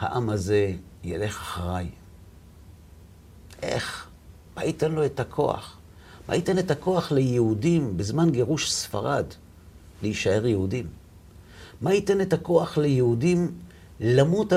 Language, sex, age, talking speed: Hebrew, male, 50-69, 105 wpm